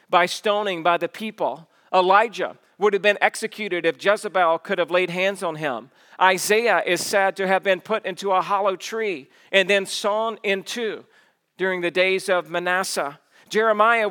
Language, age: English, 50-69